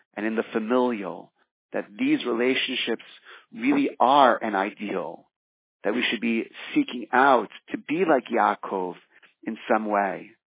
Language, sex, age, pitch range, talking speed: English, male, 40-59, 110-125 Hz, 135 wpm